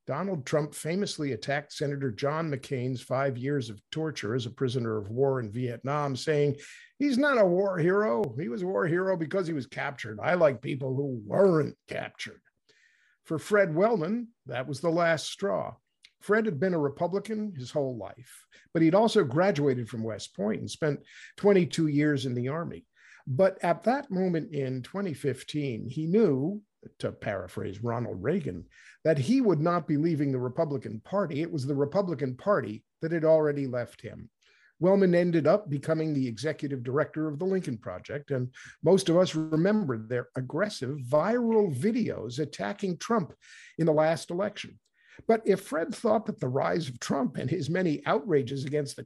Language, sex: English, male